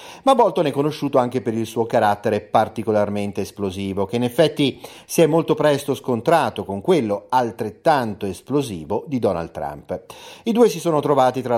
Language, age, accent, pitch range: Italian, 40-59, native, 110-150 Hz